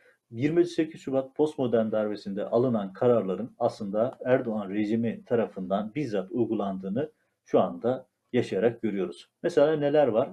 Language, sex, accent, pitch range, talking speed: Turkish, male, native, 110-135 Hz, 110 wpm